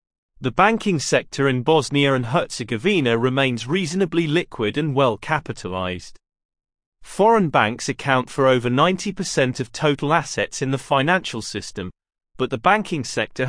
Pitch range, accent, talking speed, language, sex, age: 125-165 Hz, British, 135 wpm, English, male, 30-49